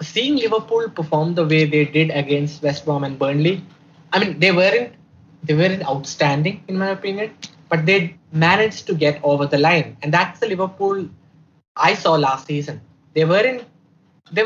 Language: English